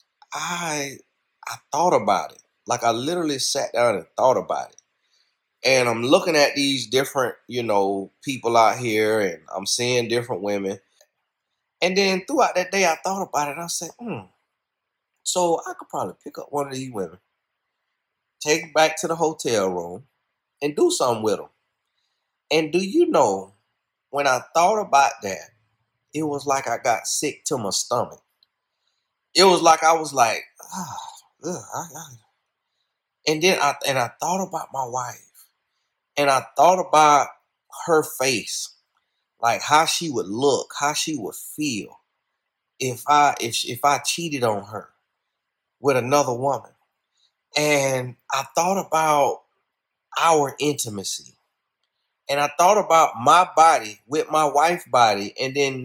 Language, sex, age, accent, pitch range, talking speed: English, male, 30-49, American, 130-165 Hz, 155 wpm